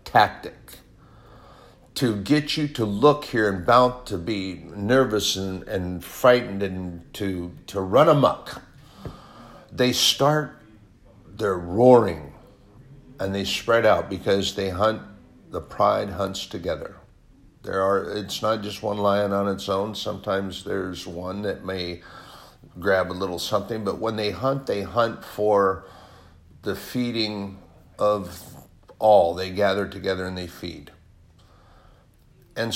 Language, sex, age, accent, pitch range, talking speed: English, male, 60-79, American, 95-115 Hz, 130 wpm